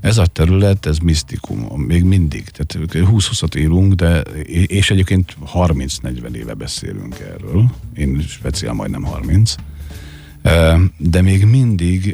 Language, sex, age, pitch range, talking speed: Hungarian, male, 50-69, 75-95 Hz, 120 wpm